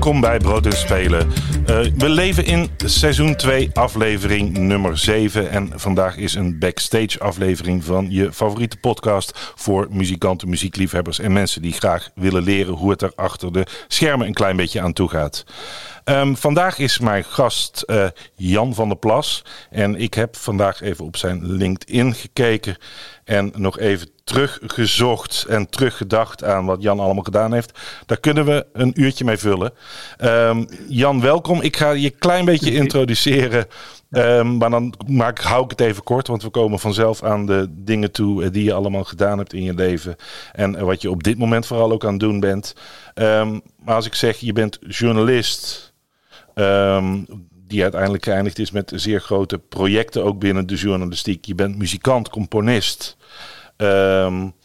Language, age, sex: English, 50-69, male